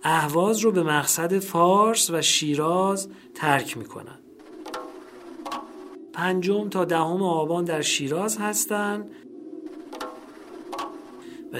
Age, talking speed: 40-59, 95 wpm